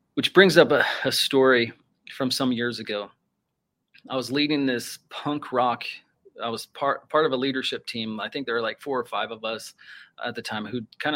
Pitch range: 120-140 Hz